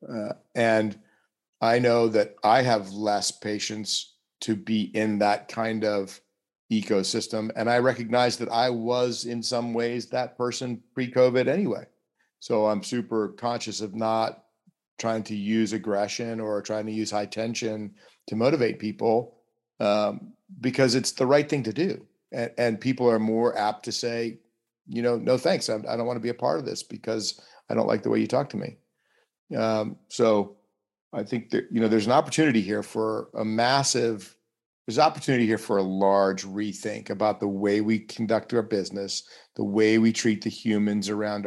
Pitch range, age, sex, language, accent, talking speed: 105-120 Hz, 40-59, male, English, American, 180 wpm